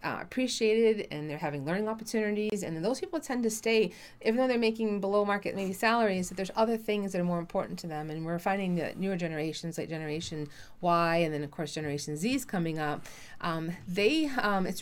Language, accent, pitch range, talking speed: English, American, 155-195 Hz, 215 wpm